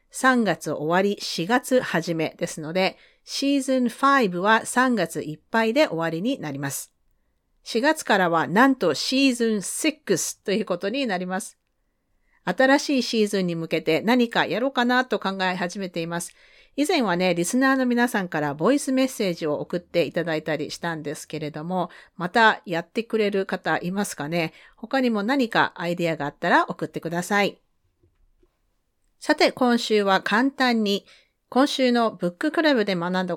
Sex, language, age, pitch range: female, Japanese, 40-59, 165-245 Hz